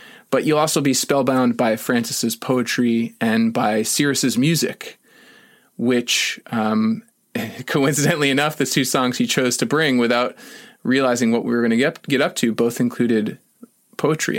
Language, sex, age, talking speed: English, male, 20-39, 155 wpm